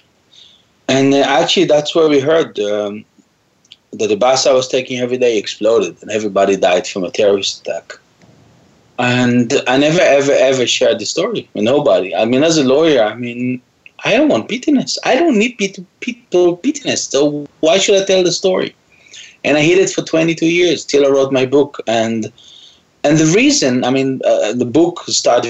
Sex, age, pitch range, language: male, 30-49, 125-175 Hz, English